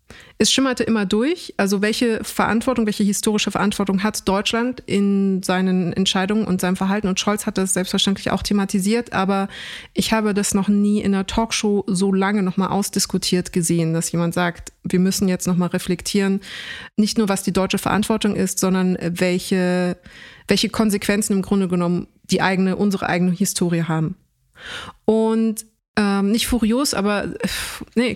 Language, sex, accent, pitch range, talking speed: German, female, German, 190-220 Hz, 155 wpm